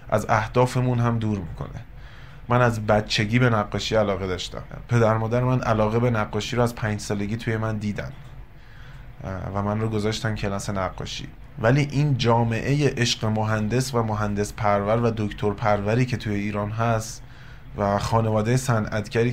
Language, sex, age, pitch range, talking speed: Persian, male, 30-49, 105-130 Hz, 150 wpm